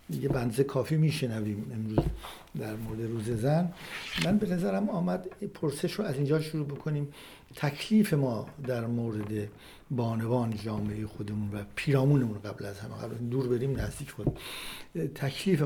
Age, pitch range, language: 60-79, 115-155 Hz, Persian